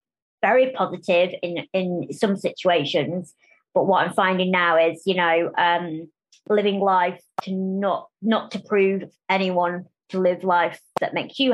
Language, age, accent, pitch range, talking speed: English, 20-39, British, 190-235 Hz, 150 wpm